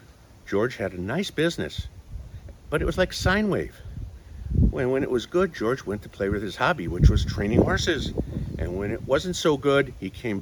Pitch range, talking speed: 90-120 Hz, 200 wpm